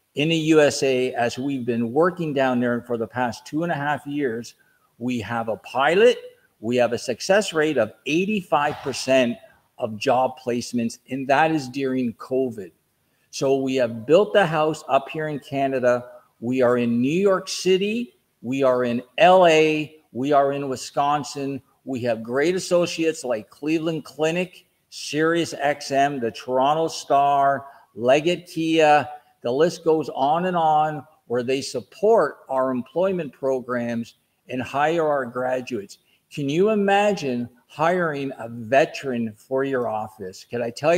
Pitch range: 125-155 Hz